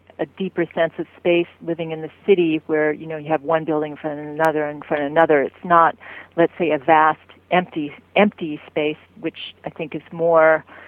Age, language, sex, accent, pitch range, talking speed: 40-59, English, female, American, 155-180 Hz, 215 wpm